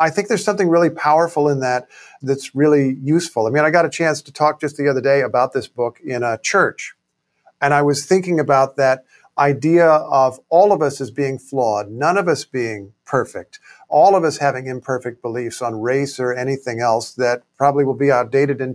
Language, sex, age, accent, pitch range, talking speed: English, male, 50-69, American, 130-160 Hz, 210 wpm